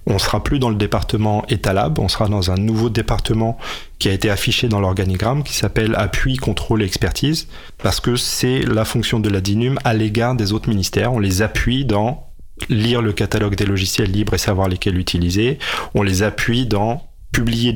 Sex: male